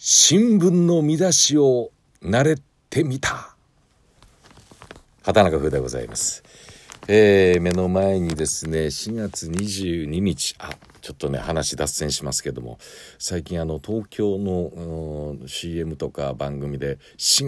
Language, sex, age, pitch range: Japanese, male, 50-69, 70-100 Hz